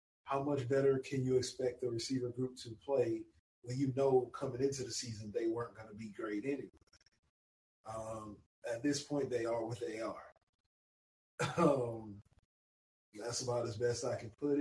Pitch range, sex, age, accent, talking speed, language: 105-130 Hz, male, 20-39, American, 175 wpm, English